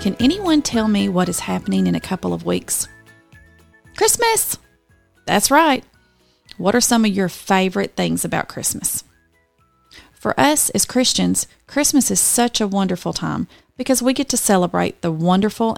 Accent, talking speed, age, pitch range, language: American, 155 wpm, 40-59, 160-225 Hz, English